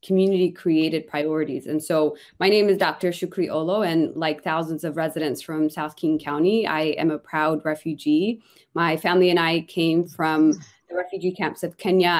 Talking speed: 175 wpm